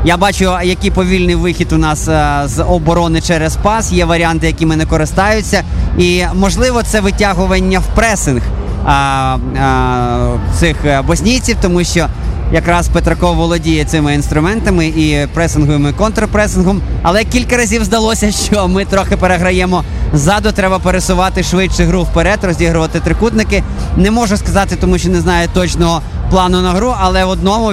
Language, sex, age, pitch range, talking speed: Ukrainian, male, 20-39, 160-195 Hz, 145 wpm